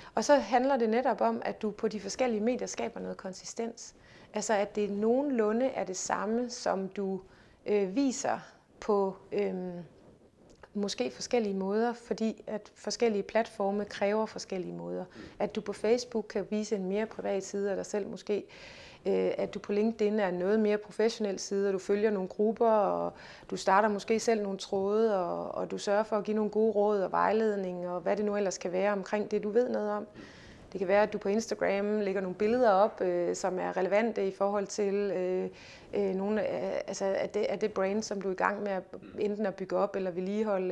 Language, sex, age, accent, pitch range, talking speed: Danish, female, 30-49, native, 195-220 Hz, 190 wpm